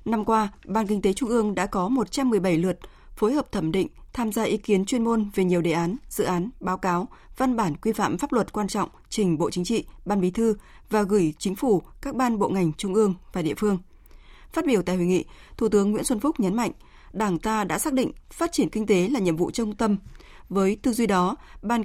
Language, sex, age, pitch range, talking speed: Vietnamese, female, 20-39, 185-235 Hz, 240 wpm